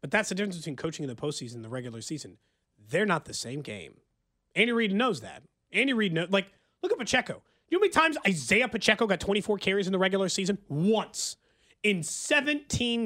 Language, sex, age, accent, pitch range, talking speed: English, male, 30-49, American, 150-220 Hz, 210 wpm